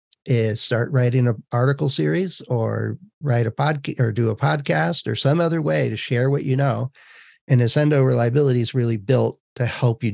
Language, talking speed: English, 190 wpm